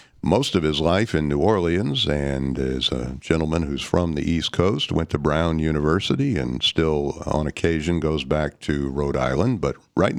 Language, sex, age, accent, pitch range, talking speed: English, male, 60-79, American, 70-85 Hz, 185 wpm